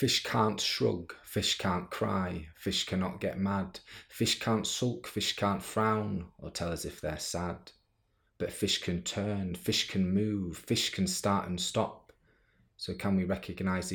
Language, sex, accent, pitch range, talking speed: English, male, British, 90-105 Hz, 165 wpm